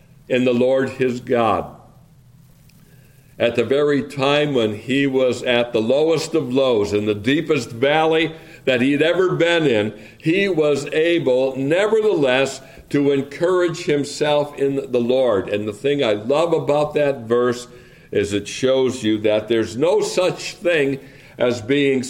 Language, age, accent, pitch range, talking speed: English, 60-79, American, 115-145 Hz, 150 wpm